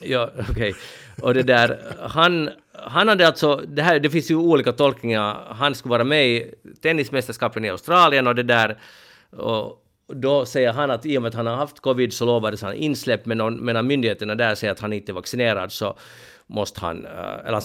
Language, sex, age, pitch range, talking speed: Swedish, male, 50-69, 115-145 Hz, 200 wpm